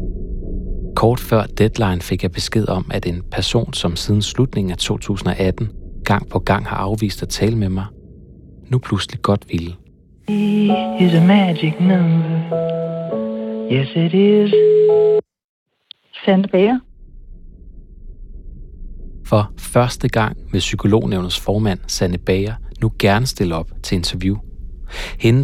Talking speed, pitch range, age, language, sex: 105 wpm, 90-110 Hz, 40-59, Danish, male